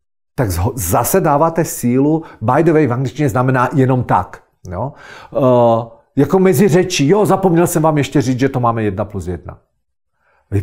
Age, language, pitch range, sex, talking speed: 50-69, Czech, 115-165 Hz, male, 165 wpm